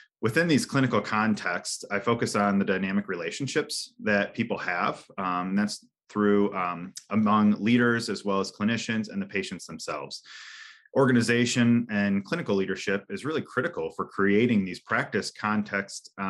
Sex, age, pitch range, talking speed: male, 30-49, 100-120 Hz, 145 wpm